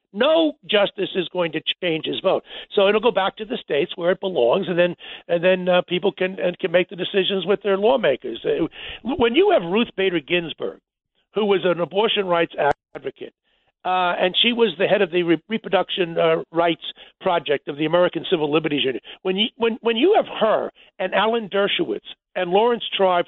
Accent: American